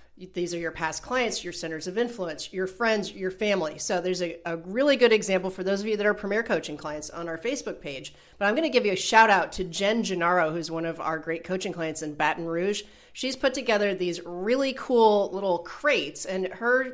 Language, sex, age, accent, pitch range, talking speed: English, female, 40-59, American, 175-220 Hz, 230 wpm